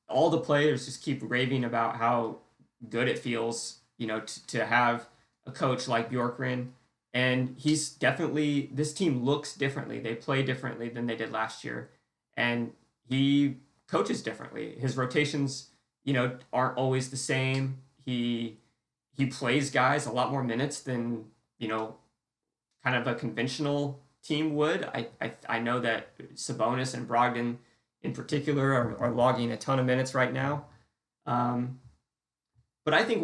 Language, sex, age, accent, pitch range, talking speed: English, male, 20-39, American, 120-140 Hz, 155 wpm